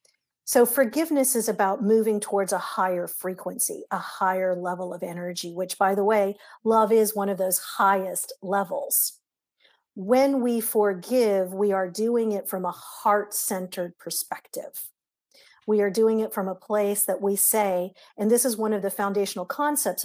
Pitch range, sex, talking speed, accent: 195-235 Hz, female, 160 wpm, American